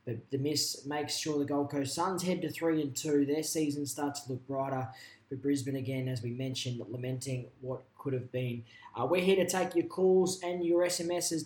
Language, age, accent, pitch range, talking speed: English, 20-39, Australian, 135-160 Hz, 210 wpm